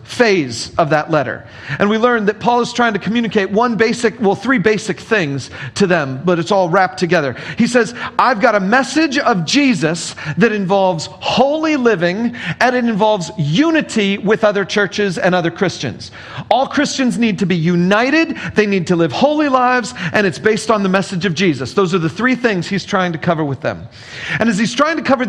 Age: 40-59